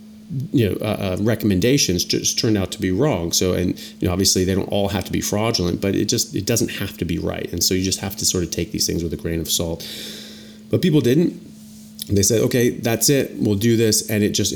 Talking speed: 255 wpm